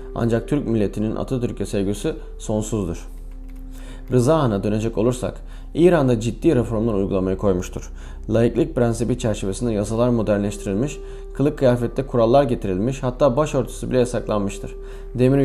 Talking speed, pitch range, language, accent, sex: 115 wpm, 105-130 Hz, Turkish, native, male